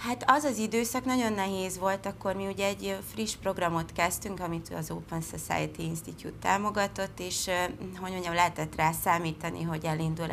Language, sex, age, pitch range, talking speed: Hungarian, female, 30-49, 155-185 Hz, 165 wpm